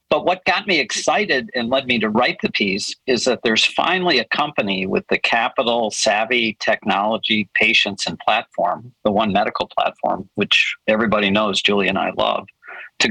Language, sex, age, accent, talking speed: English, male, 50-69, American, 175 wpm